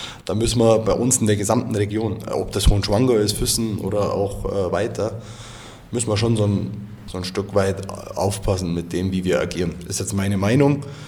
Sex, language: male, German